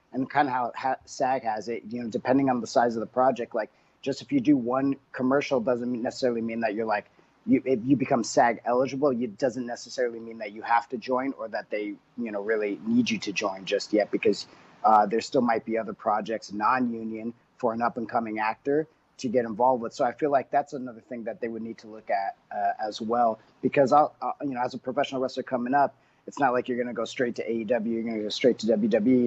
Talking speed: 240 wpm